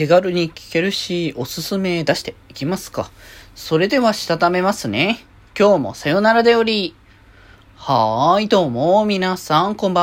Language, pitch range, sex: Japanese, 125-180 Hz, male